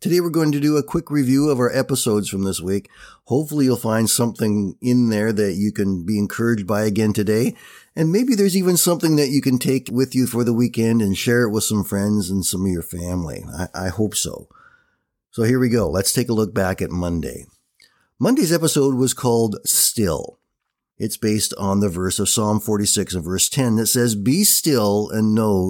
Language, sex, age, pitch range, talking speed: English, male, 50-69, 95-120 Hz, 210 wpm